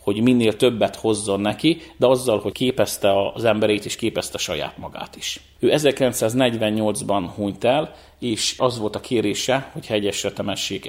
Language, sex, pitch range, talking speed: Hungarian, male, 105-125 Hz, 155 wpm